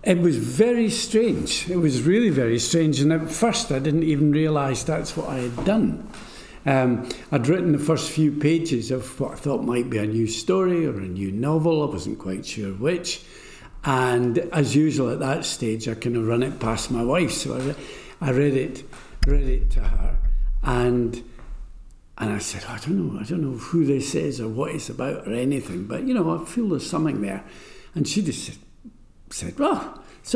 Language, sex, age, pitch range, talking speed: English, male, 60-79, 125-170 Hz, 205 wpm